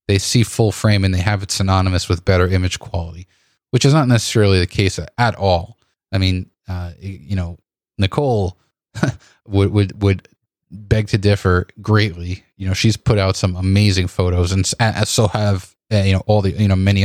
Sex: male